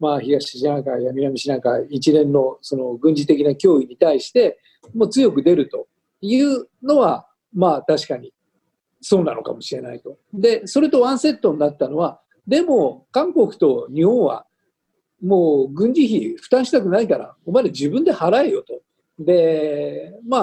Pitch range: 165-270 Hz